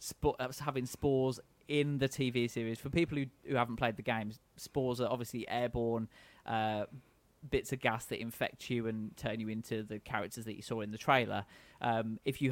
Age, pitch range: 20-39, 115-135 Hz